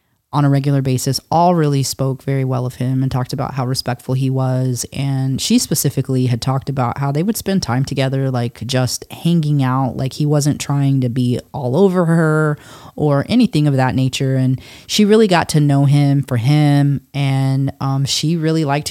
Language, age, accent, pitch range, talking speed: English, 30-49, American, 130-155 Hz, 195 wpm